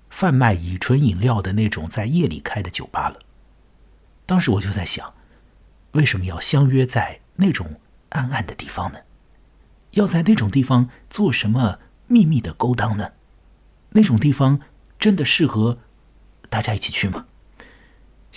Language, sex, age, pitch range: Chinese, male, 50-69, 95-145 Hz